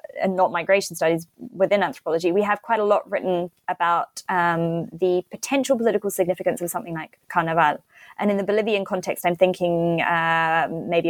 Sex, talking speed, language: female, 170 wpm, English